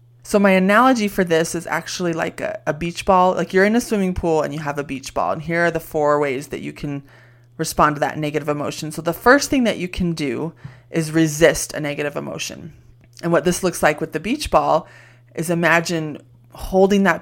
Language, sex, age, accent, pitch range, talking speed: English, female, 20-39, American, 145-170 Hz, 225 wpm